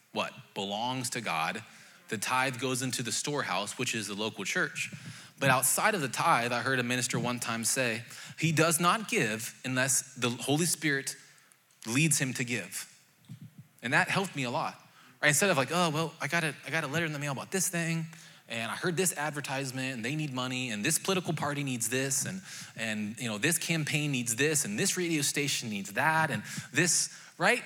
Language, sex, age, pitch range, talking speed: English, male, 20-39, 130-175 Hz, 210 wpm